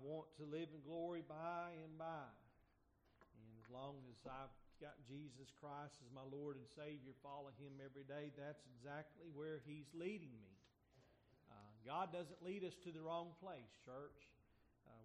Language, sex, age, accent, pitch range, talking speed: English, male, 40-59, American, 130-155 Hz, 170 wpm